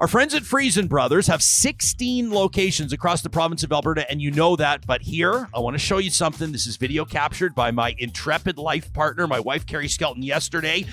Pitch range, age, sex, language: 140-195 Hz, 40-59, male, English